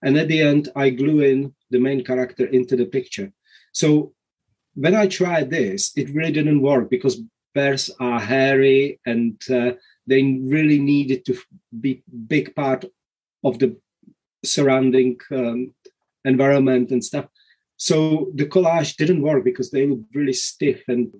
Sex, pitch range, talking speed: male, 125-160 Hz, 155 wpm